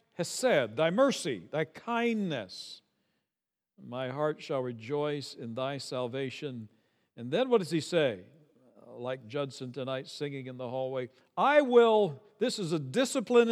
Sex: male